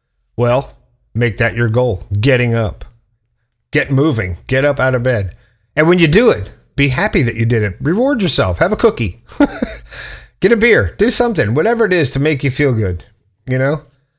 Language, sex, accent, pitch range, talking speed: English, male, American, 115-145 Hz, 190 wpm